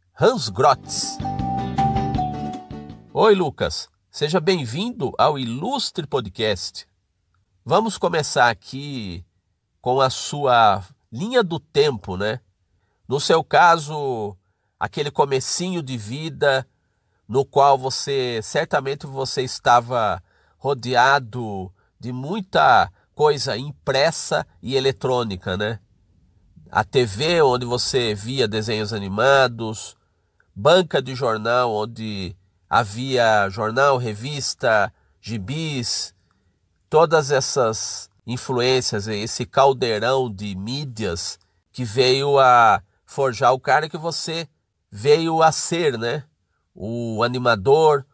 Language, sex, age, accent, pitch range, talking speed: Portuguese, male, 50-69, Brazilian, 100-140 Hz, 95 wpm